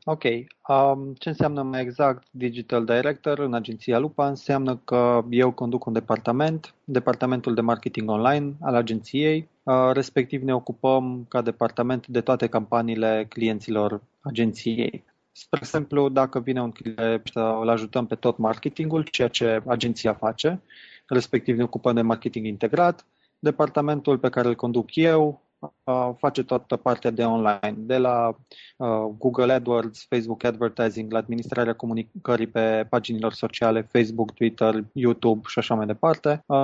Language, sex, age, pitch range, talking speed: Romanian, male, 20-39, 115-130 Hz, 135 wpm